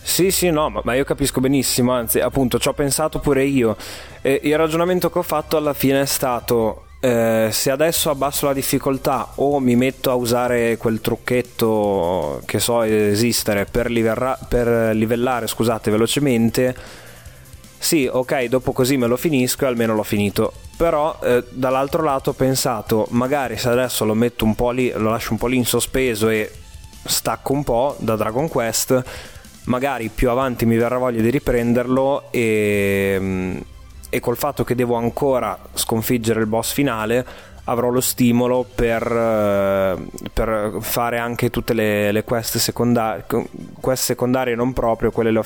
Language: Italian